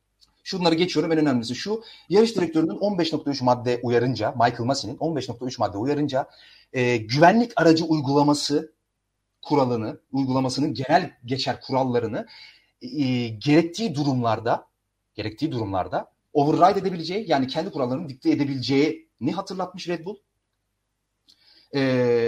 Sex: male